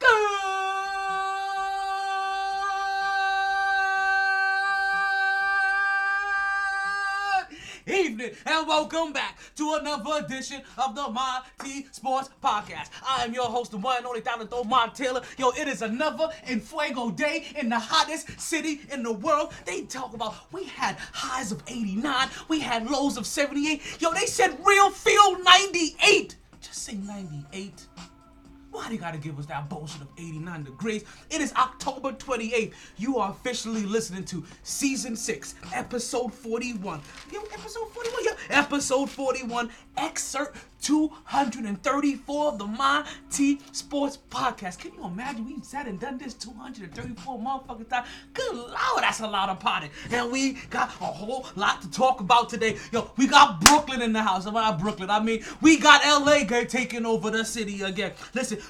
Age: 30-49